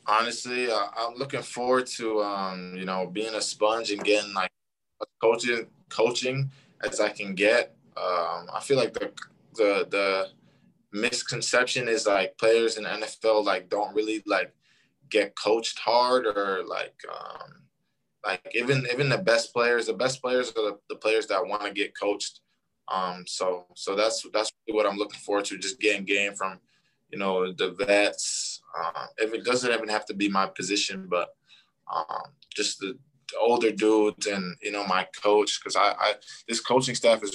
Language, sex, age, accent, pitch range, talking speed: English, male, 20-39, American, 95-120 Hz, 180 wpm